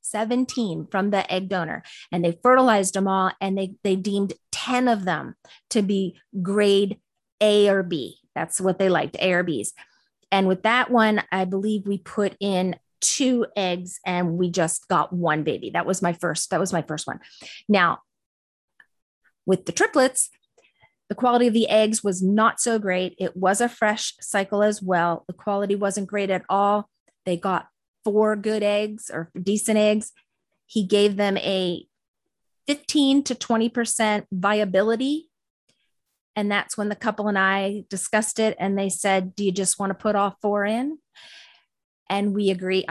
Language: English